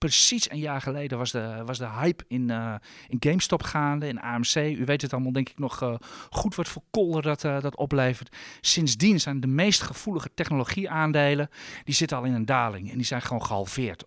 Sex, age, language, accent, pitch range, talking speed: male, 40-59, Dutch, Dutch, 120-150 Hz, 210 wpm